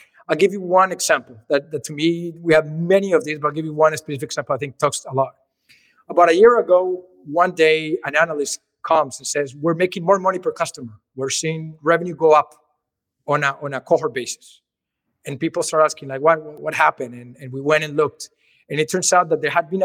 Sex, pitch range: male, 150-185 Hz